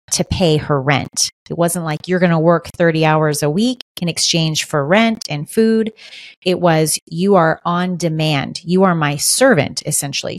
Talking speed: 185 wpm